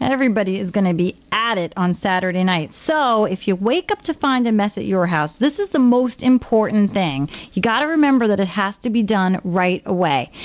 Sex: female